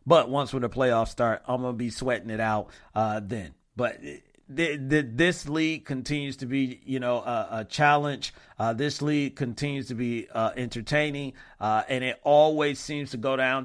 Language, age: English, 40-59